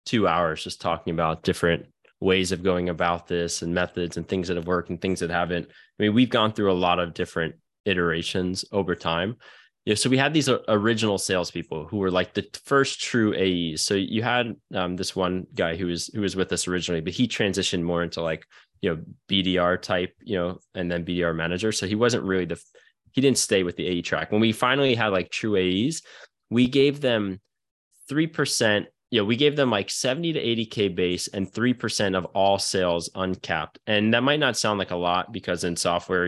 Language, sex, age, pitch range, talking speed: English, male, 20-39, 85-105 Hz, 210 wpm